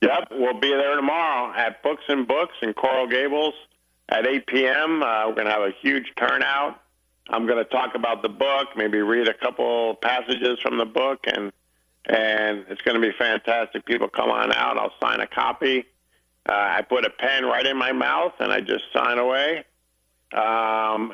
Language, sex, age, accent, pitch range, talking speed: Italian, male, 50-69, American, 100-120 Hz, 195 wpm